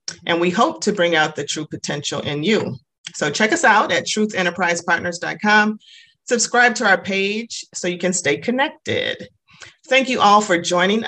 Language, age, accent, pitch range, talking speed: English, 40-59, American, 170-205 Hz, 170 wpm